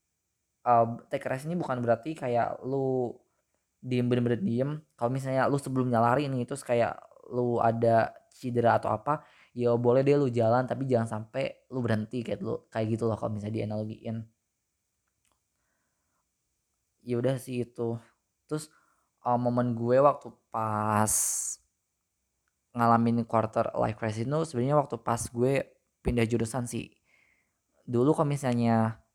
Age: 20-39